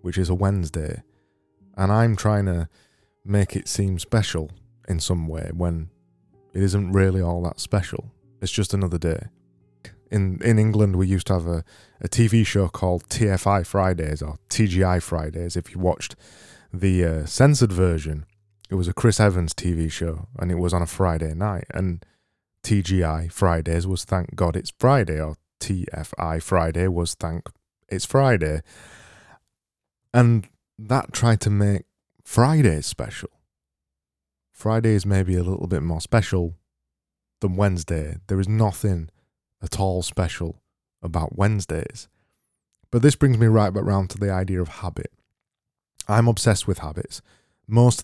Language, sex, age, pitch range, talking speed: English, male, 20-39, 85-105 Hz, 150 wpm